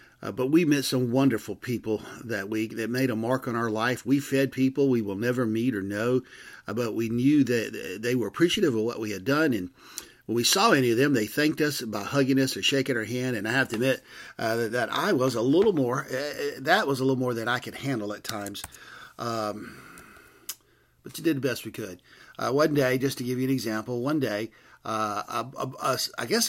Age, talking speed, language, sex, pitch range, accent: 50-69, 240 wpm, English, male, 115-135 Hz, American